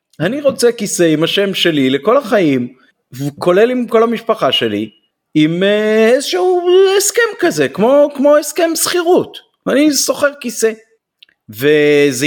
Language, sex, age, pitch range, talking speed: Hebrew, male, 30-49, 125-200 Hz, 120 wpm